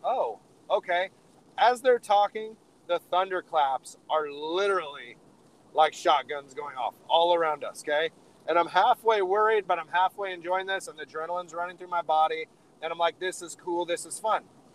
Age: 30-49